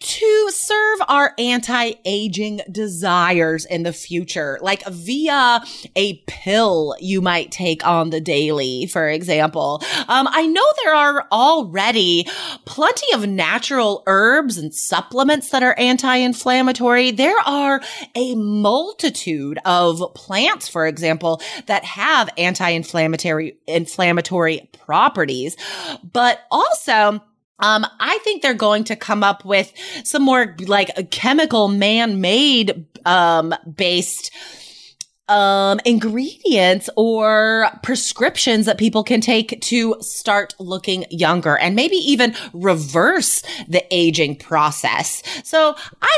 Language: English